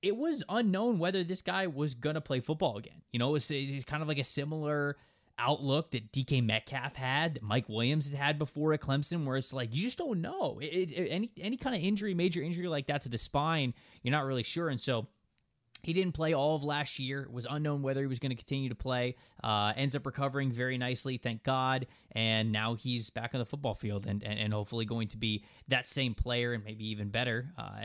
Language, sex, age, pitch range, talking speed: English, male, 20-39, 115-150 Hz, 240 wpm